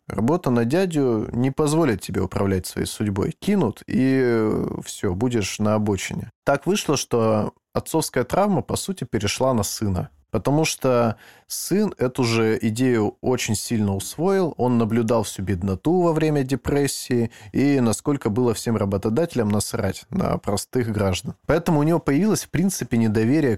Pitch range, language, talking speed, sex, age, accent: 105-140 Hz, Russian, 145 wpm, male, 20-39, native